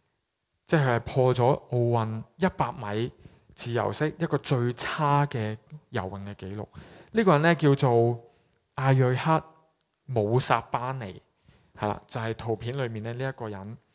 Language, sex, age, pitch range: Chinese, male, 20-39, 120-170 Hz